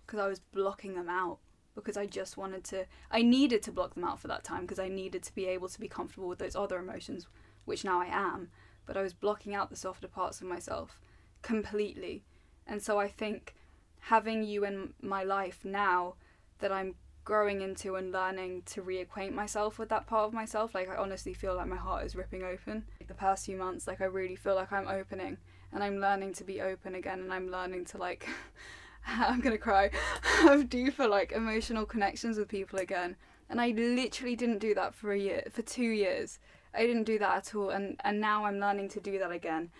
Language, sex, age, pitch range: English, female, 10-29, 185-225 Hz